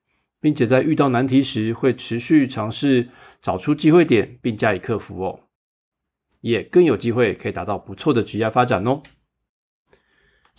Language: Chinese